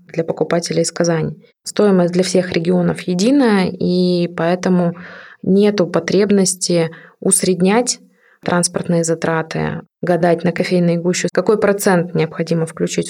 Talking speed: 110 wpm